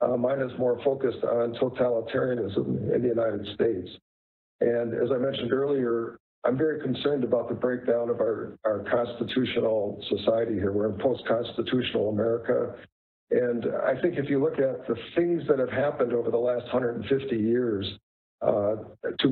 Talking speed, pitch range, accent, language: 160 wpm, 110-125 Hz, American, English